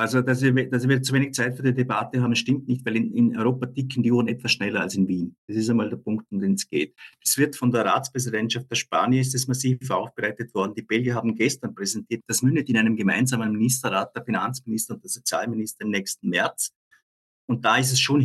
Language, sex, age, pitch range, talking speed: German, male, 50-69, 115-130 Hz, 225 wpm